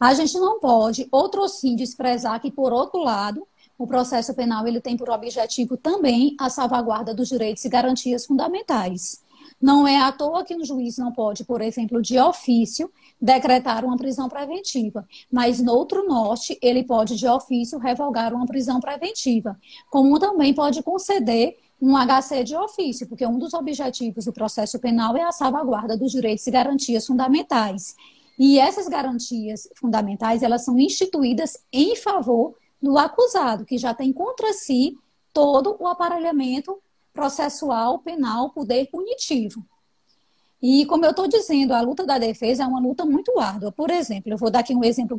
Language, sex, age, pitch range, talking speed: Portuguese, female, 20-39, 235-290 Hz, 165 wpm